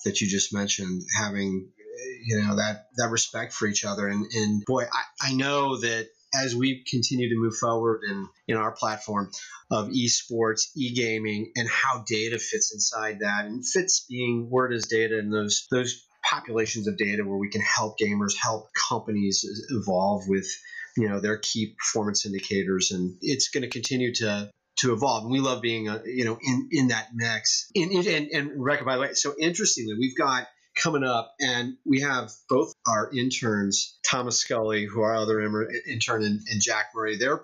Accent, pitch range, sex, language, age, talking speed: American, 105-130 Hz, male, English, 30-49, 185 wpm